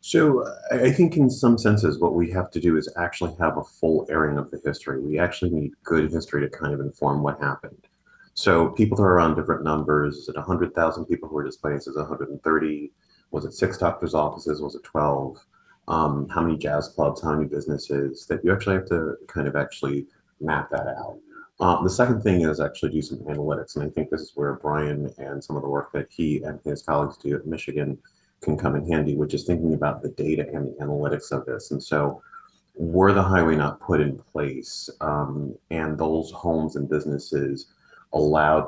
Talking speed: 210 wpm